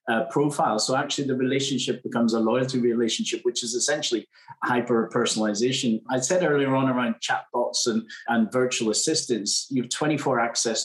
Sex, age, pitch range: male, 30-49, 115-140 Hz